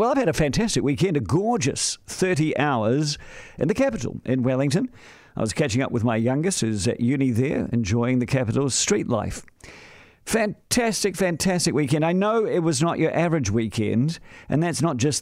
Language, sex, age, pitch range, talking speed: English, male, 50-69, 120-165 Hz, 180 wpm